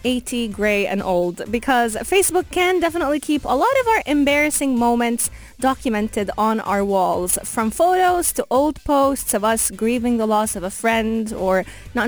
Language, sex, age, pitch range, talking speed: English, female, 20-39, 215-285 Hz, 170 wpm